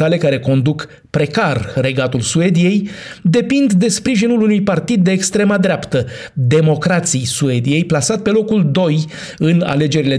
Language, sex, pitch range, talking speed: Romanian, male, 135-180 Hz, 125 wpm